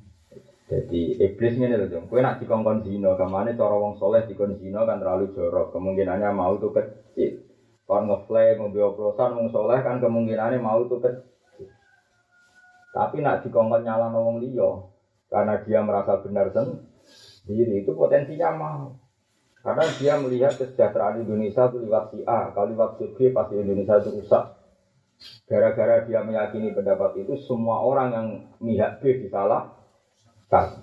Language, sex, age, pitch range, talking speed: Malay, male, 30-49, 100-125 Hz, 140 wpm